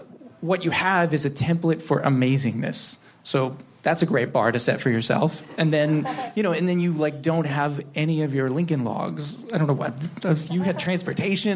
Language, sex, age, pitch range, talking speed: English, male, 30-49, 135-170 Hz, 210 wpm